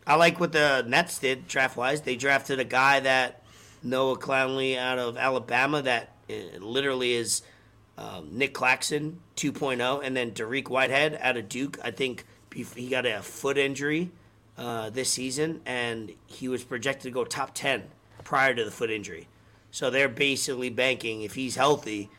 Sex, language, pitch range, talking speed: male, English, 115-145 Hz, 165 wpm